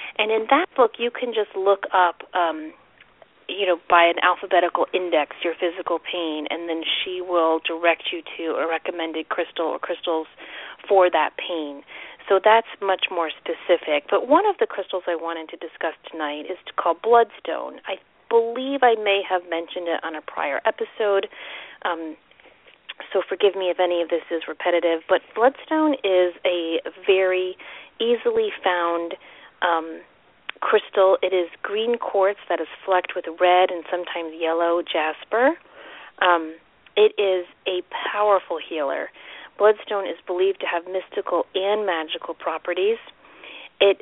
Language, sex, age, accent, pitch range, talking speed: English, female, 30-49, American, 170-205 Hz, 155 wpm